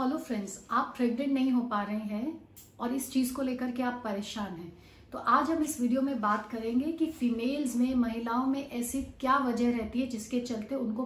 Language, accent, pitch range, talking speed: Hindi, native, 225-255 Hz, 210 wpm